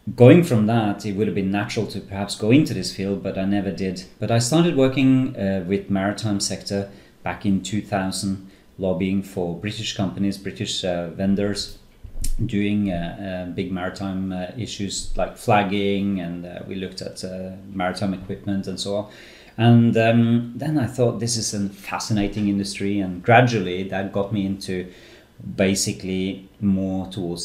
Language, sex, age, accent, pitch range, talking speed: English, male, 30-49, Norwegian, 95-105 Hz, 165 wpm